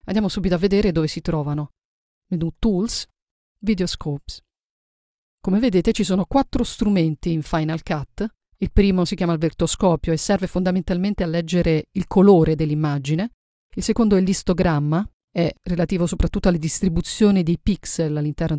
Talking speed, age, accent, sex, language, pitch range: 145 wpm, 40-59, native, female, Italian, 160-200 Hz